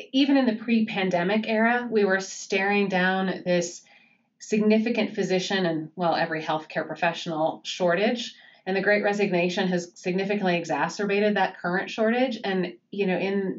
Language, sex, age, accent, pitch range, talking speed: English, female, 30-49, American, 180-210 Hz, 145 wpm